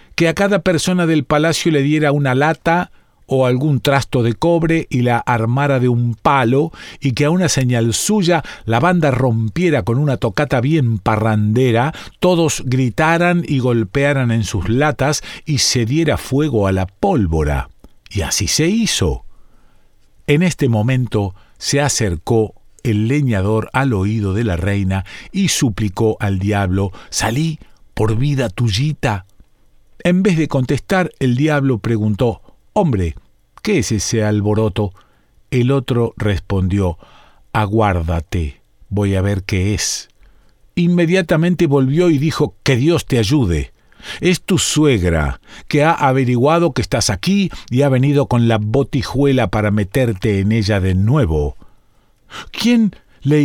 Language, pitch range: Spanish, 105-150 Hz